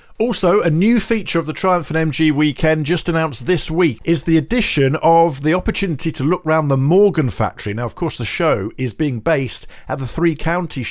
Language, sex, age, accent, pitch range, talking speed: English, male, 50-69, British, 110-155 Hz, 210 wpm